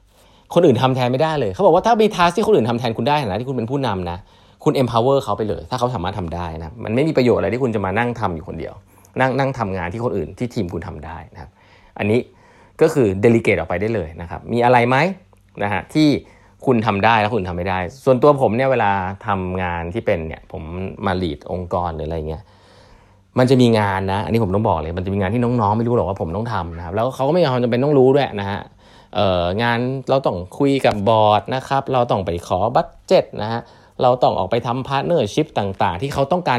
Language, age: Thai, 20-39